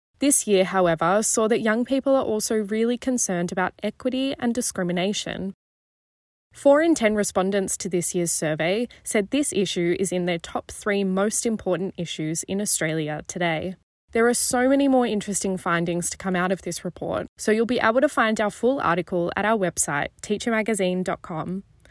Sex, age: female, 10-29